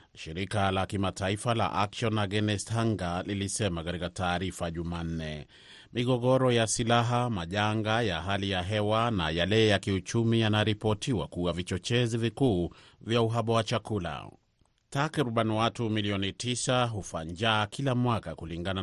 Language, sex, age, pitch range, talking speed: Swahili, male, 30-49, 95-115 Hz, 125 wpm